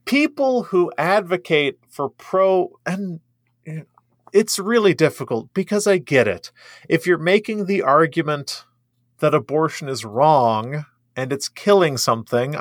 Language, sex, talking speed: English, male, 125 wpm